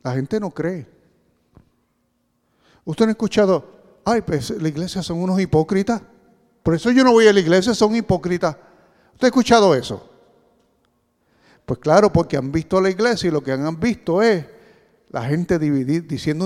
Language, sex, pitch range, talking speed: English, male, 155-220 Hz, 170 wpm